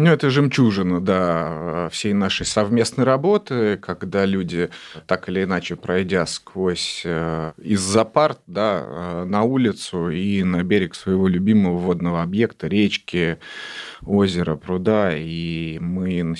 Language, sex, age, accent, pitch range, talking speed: Russian, male, 30-49, native, 85-100 Hz, 130 wpm